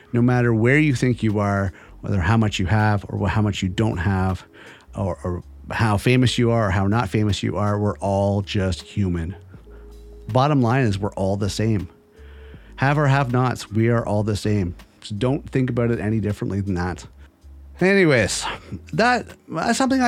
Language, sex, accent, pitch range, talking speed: English, male, American, 100-130 Hz, 185 wpm